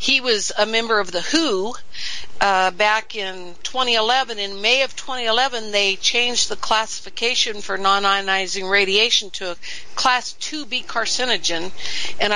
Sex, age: female, 50-69